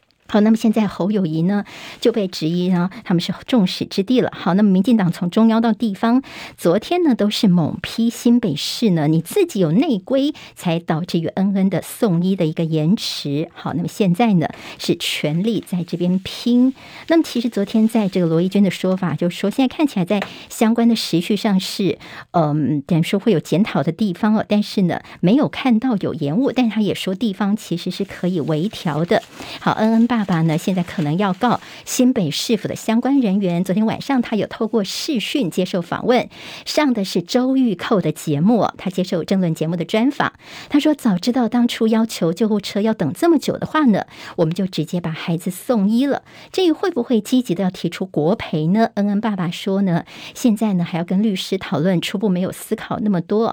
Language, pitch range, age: Chinese, 175-230 Hz, 50-69